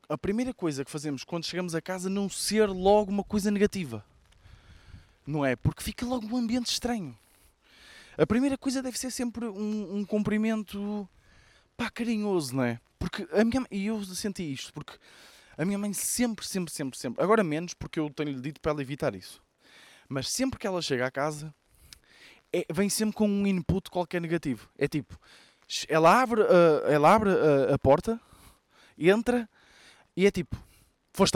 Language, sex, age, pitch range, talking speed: Portuguese, male, 20-39, 150-215 Hz, 175 wpm